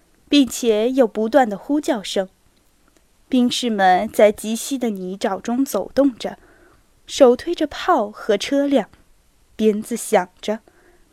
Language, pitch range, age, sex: Chinese, 210-275 Hz, 10-29, female